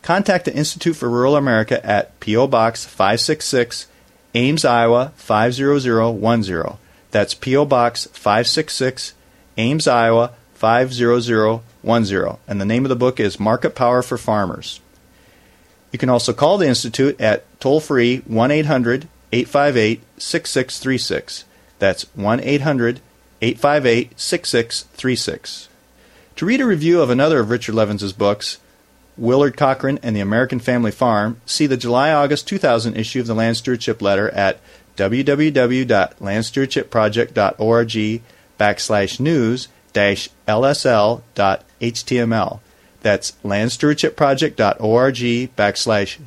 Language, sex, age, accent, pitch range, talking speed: English, male, 40-59, American, 110-135 Hz, 100 wpm